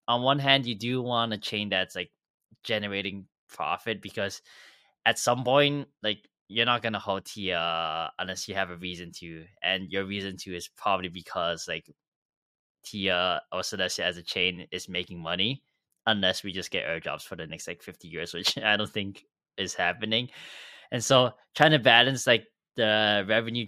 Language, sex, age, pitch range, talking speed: English, male, 10-29, 95-115 Hz, 180 wpm